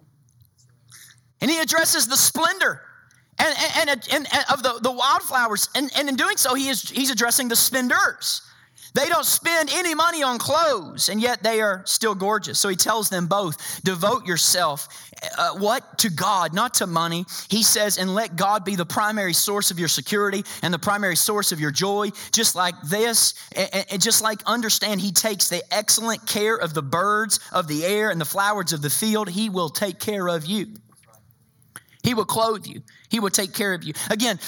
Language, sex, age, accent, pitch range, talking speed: English, male, 30-49, American, 180-235 Hz, 195 wpm